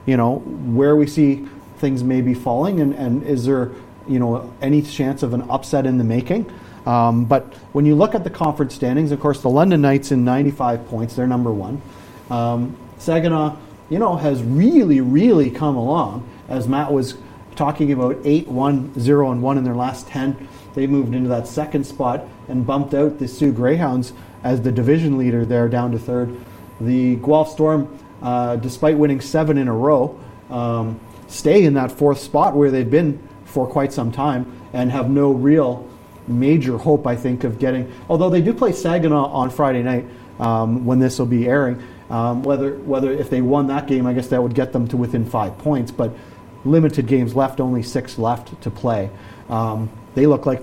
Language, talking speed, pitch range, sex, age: English, 195 wpm, 120-145 Hz, male, 30-49